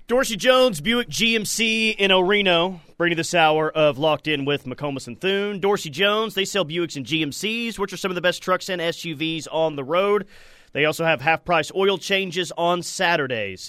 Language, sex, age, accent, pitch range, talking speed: English, male, 30-49, American, 150-190 Hz, 195 wpm